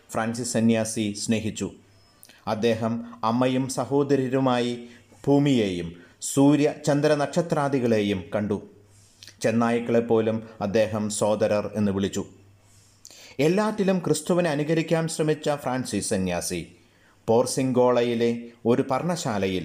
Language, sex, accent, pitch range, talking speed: Malayalam, male, native, 105-140 Hz, 75 wpm